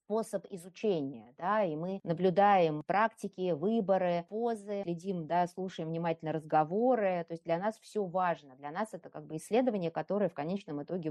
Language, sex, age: Russian, female, 20-39